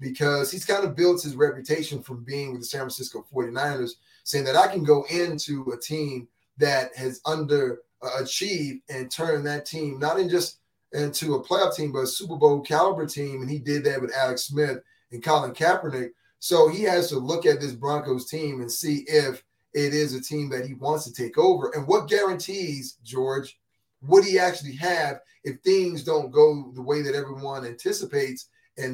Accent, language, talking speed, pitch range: American, English, 195 wpm, 135-185 Hz